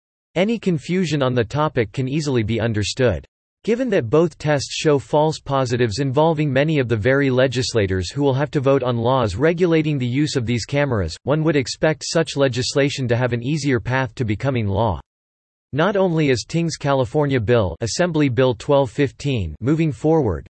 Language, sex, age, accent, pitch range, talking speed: English, male, 40-59, American, 115-145 Hz, 175 wpm